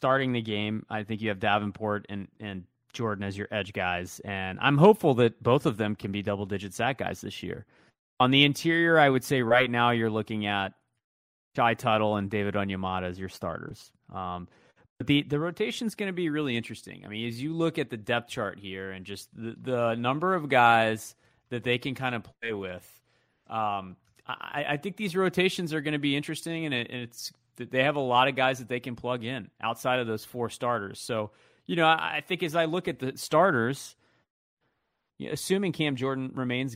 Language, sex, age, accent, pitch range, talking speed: English, male, 30-49, American, 110-150 Hz, 205 wpm